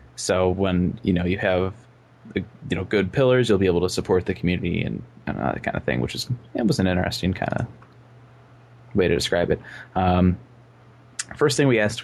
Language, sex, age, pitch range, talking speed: English, male, 20-39, 90-105 Hz, 200 wpm